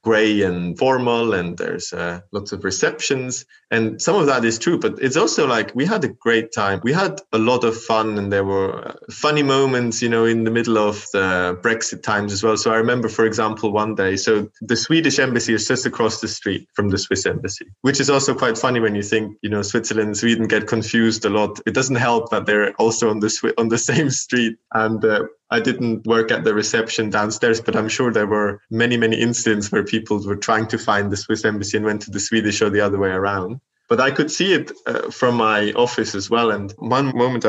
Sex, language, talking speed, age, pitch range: male, German, 235 wpm, 20-39, 100-120 Hz